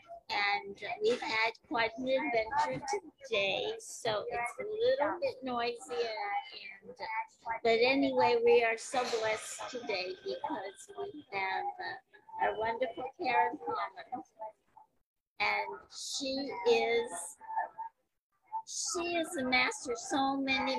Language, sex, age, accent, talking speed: English, female, 50-69, American, 115 wpm